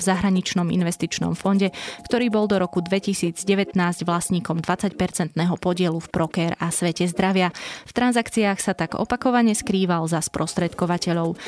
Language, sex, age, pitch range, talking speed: Slovak, female, 20-39, 170-200 Hz, 130 wpm